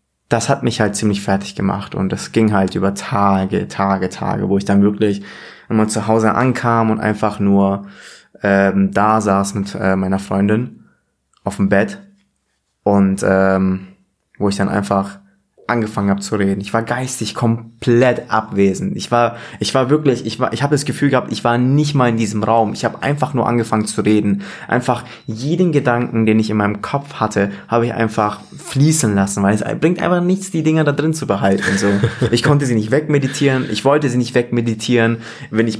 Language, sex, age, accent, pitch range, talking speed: German, male, 20-39, German, 100-120 Hz, 195 wpm